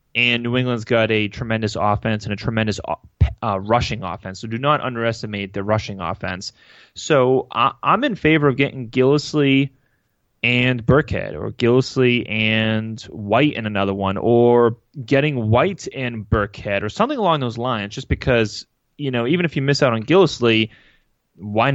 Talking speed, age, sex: 160 wpm, 20-39, male